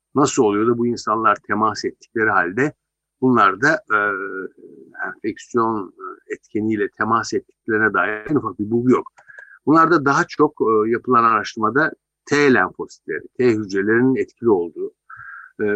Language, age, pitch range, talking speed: Turkish, 60-79, 115-145 Hz, 130 wpm